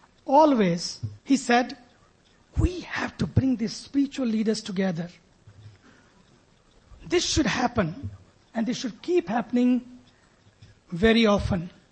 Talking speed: 105 wpm